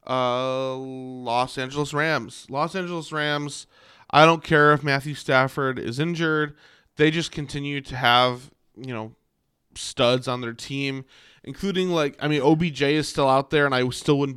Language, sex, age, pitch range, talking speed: English, male, 20-39, 125-140 Hz, 165 wpm